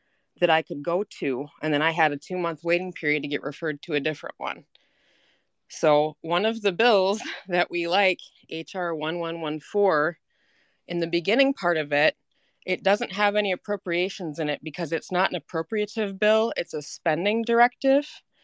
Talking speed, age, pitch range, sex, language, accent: 175 wpm, 20-39, 160-200 Hz, female, English, American